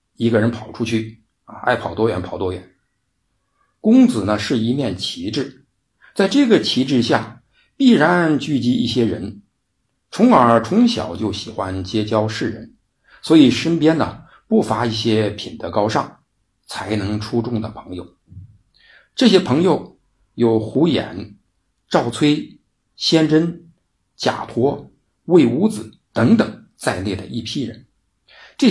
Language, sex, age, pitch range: Chinese, male, 50-69, 110-175 Hz